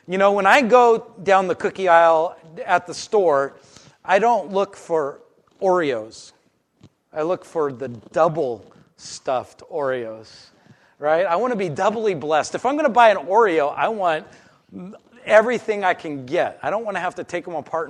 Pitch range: 140-180 Hz